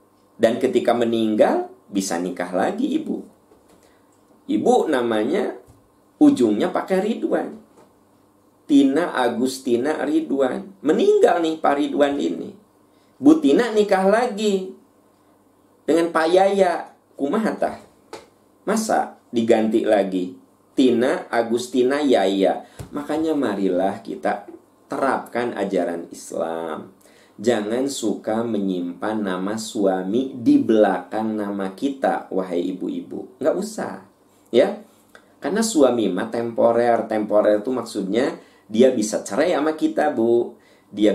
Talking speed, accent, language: 100 wpm, native, Indonesian